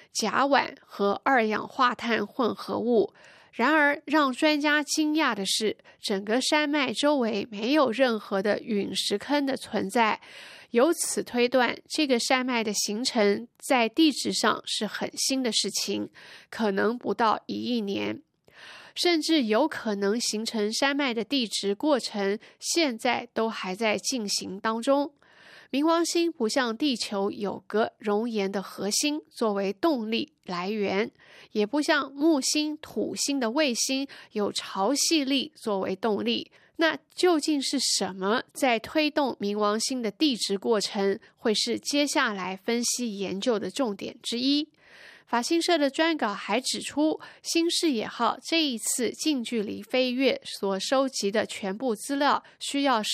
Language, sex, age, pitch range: Chinese, female, 20-39, 205-285 Hz